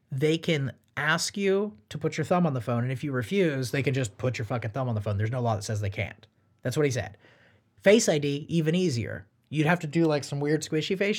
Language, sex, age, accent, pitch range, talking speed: English, male, 30-49, American, 125-185 Hz, 265 wpm